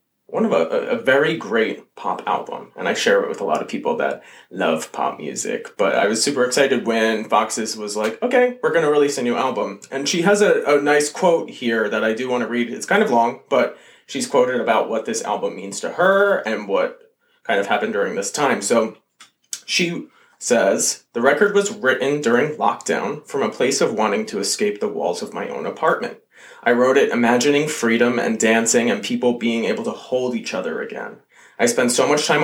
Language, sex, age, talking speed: English, male, 30-49, 215 wpm